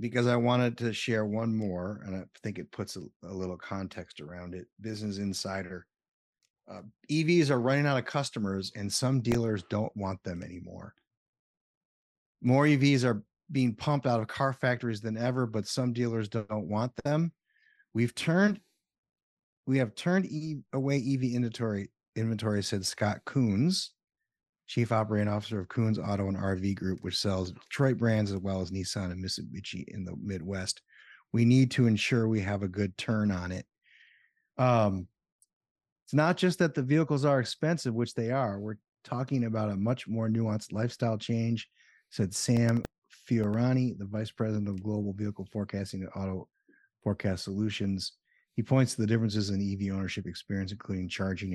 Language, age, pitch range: English, 30-49, 100-125 Hz